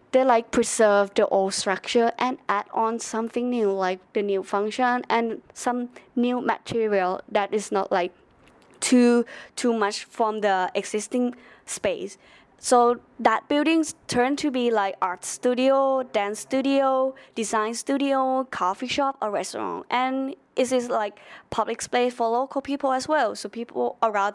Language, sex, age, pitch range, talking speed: English, female, 20-39, 210-255 Hz, 150 wpm